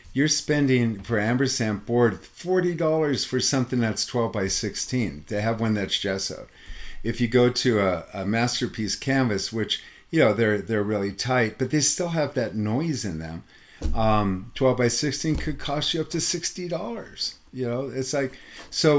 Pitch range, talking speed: 95-140 Hz, 175 wpm